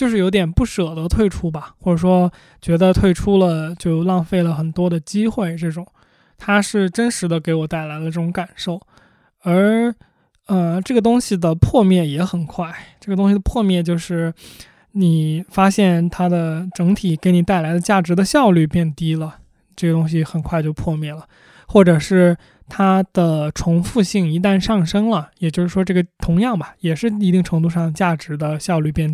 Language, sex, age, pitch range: Chinese, male, 20-39, 160-190 Hz